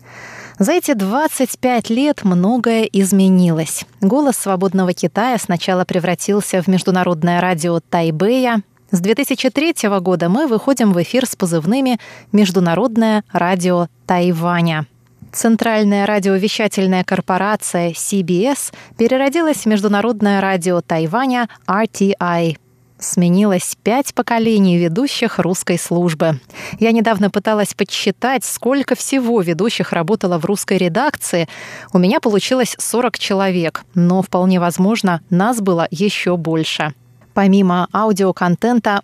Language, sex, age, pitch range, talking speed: Russian, female, 20-39, 180-225 Hz, 105 wpm